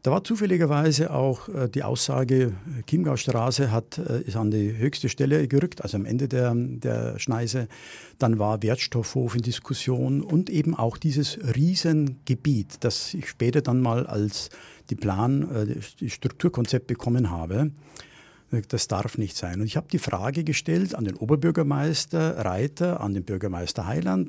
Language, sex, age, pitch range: German, male, 50-69, 115-155 Hz